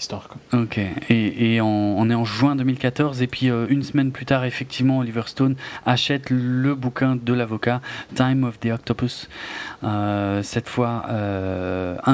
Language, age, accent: French, 30-49, French